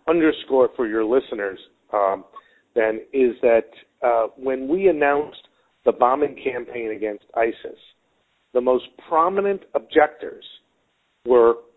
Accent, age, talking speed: American, 50-69, 110 wpm